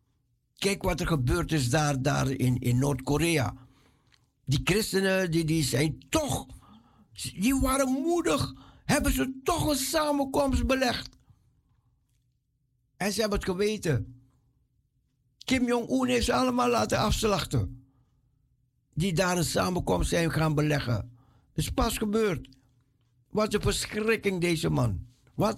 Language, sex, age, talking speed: Dutch, male, 60-79, 125 wpm